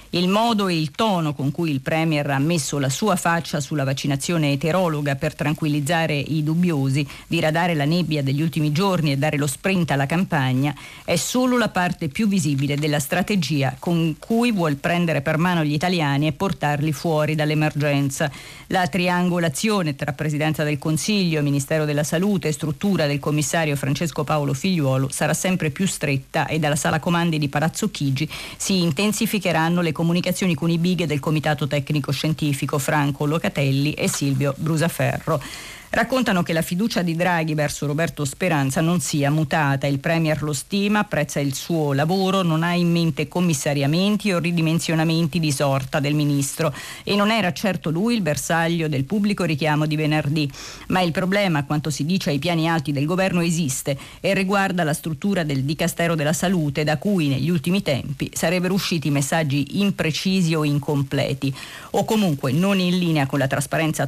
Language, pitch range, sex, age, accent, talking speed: Italian, 145-175 Hz, female, 40-59, native, 165 wpm